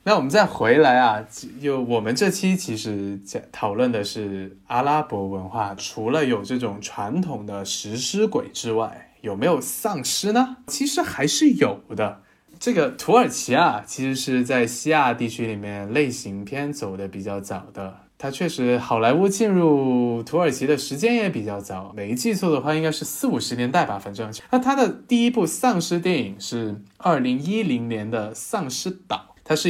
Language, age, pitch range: Chinese, 20-39, 105-175 Hz